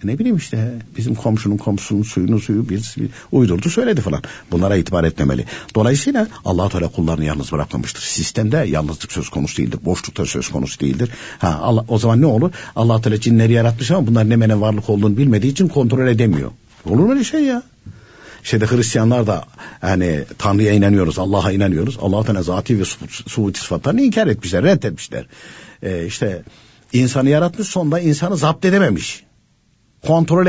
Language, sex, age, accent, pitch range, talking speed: Turkish, male, 60-79, native, 100-140 Hz, 160 wpm